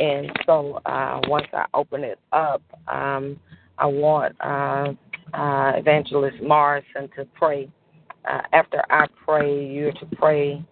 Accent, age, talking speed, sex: American, 40-59, 135 wpm, female